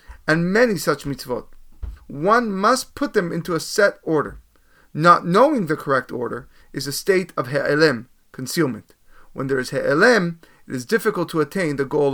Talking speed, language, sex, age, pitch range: 170 wpm, English, male, 30-49, 150-210 Hz